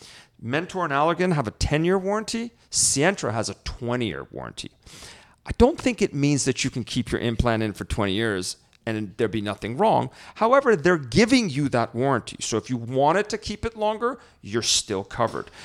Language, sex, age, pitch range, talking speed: English, male, 40-59, 110-155 Hz, 190 wpm